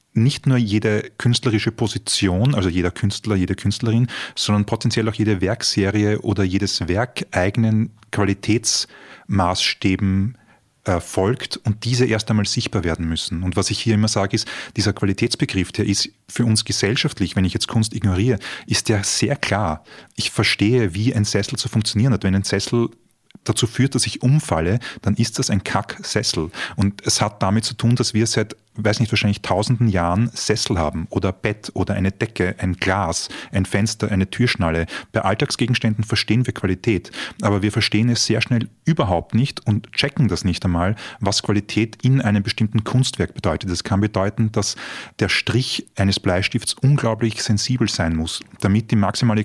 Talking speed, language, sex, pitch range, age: 170 wpm, German, male, 100-115 Hz, 30-49